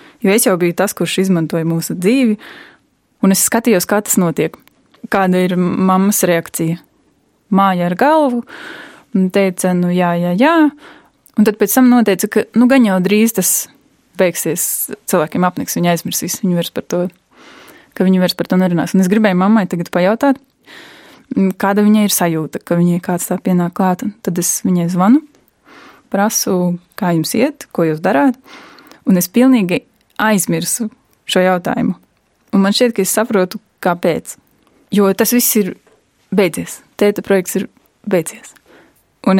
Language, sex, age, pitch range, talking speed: Spanish, female, 20-39, 180-230 Hz, 155 wpm